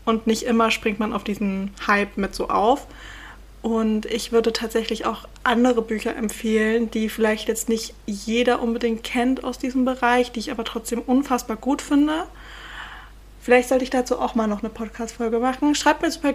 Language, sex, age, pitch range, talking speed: German, female, 20-39, 215-245 Hz, 180 wpm